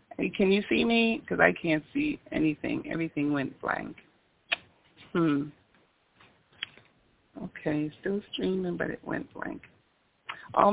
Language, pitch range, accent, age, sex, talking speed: English, 150-195 Hz, American, 40-59, female, 125 wpm